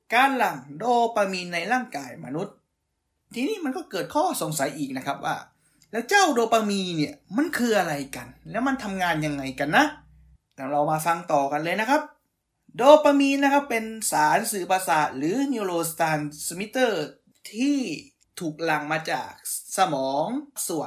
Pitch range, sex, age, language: 160-265 Hz, male, 20-39, Thai